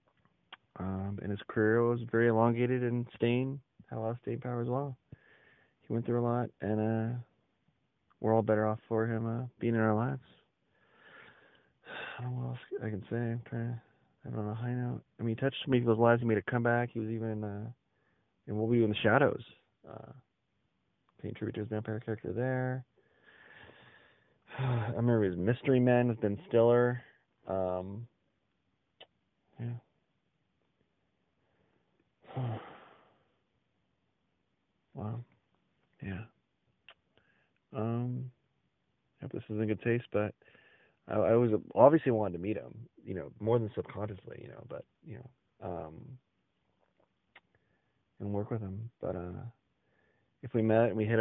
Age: 30-49